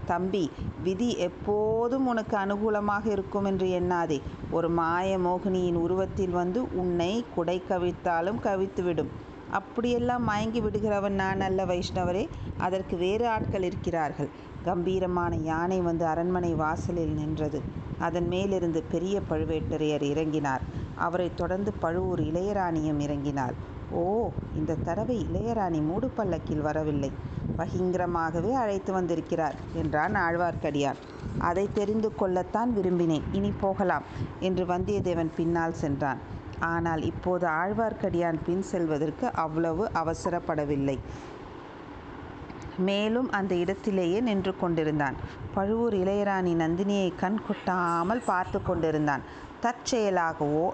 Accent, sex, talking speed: native, female, 100 wpm